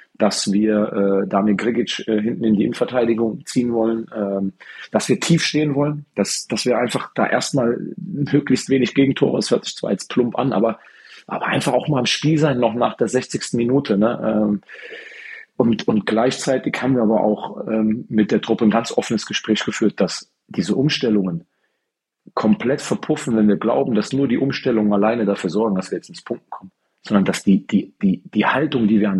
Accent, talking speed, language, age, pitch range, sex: German, 190 wpm, German, 40-59, 105-145 Hz, male